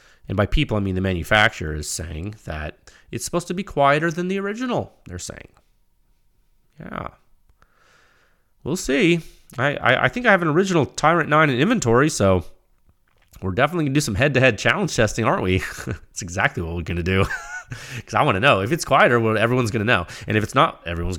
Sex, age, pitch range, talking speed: male, 30-49, 95-135 Hz, 205 wpm